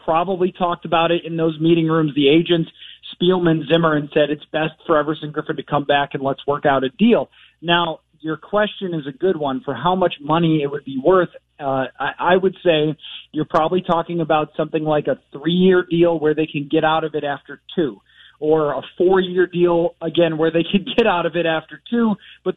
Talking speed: 215 wpm